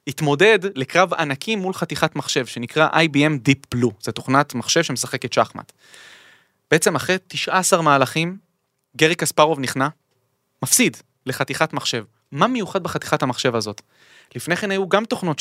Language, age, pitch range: Hebrew, 20-39, 130-185 Hz